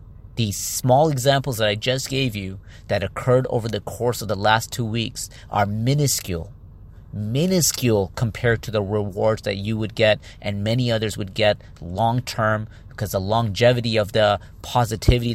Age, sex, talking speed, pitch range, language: 30-49, male, 160 wpm, 105-125 Hz, English